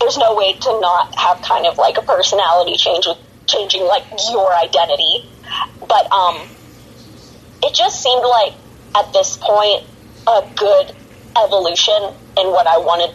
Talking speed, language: 150 wpm, English